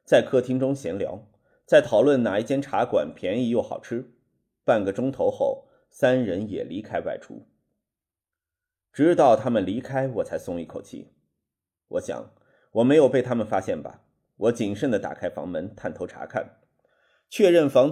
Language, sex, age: Chinese, male, 30-49